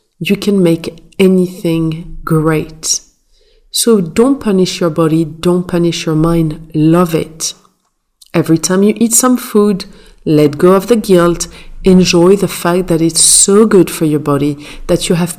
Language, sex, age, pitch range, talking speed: English, female, 40-59, 165-200 Hz, 155 wpm